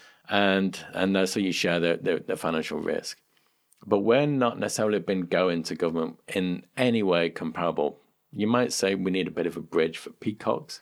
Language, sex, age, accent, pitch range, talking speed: English, male, 50-69, British, 90-115 Hz, 205 wpm